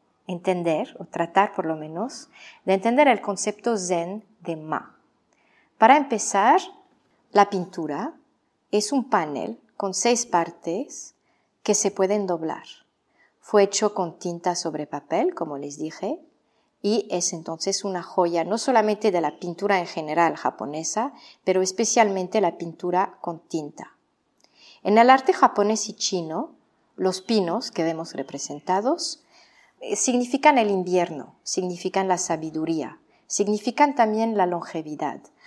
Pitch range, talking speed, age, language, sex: 170-225 Hz, 130 wpm, 40-59, Spanish, female